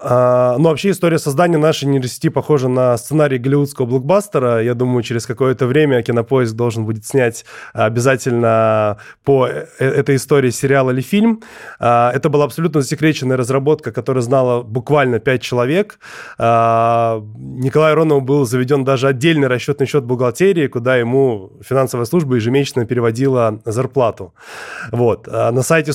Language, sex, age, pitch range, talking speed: Russian, male, 20-39, 125-150 Hz, 130 wpm